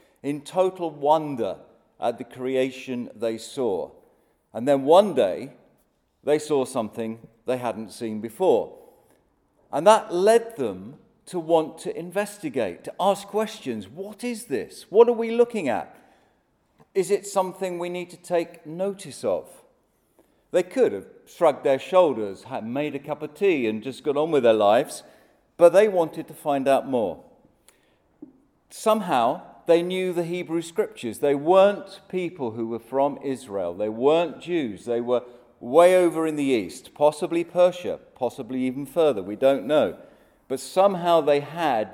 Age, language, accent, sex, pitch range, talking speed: 40-59, English, British, male, 130-195 Hz, 155 wpm